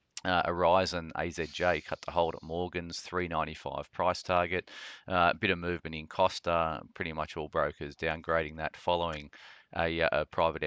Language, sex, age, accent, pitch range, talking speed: English, male, 30-49, Australian, 75-85 Hz, 165 wpm